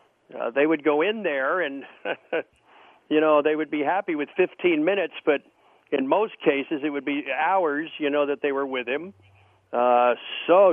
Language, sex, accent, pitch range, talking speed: English, male, American, 140-165 Hz, 185 wpm